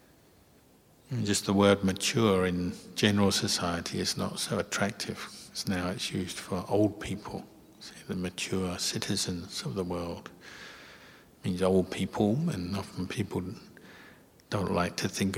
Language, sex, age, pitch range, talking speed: English, male, 60-79, 95-105 Hz, 135 wpm